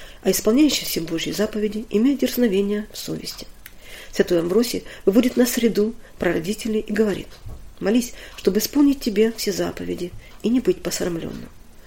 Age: 40-59